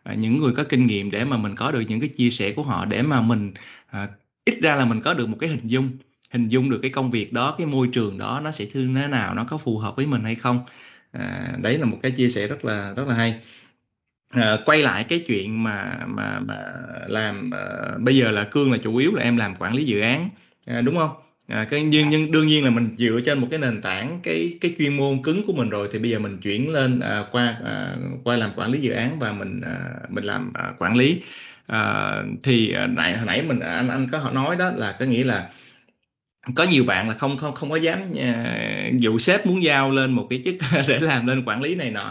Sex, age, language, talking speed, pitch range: male, 20-39, Vietnamese, 255 wpm, 115-140 Hz